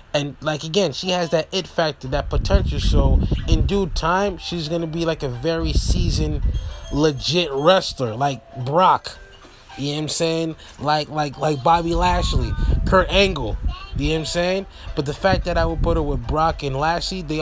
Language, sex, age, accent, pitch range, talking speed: English, male, 20-39, American, 115-175 Hz, 195 wpm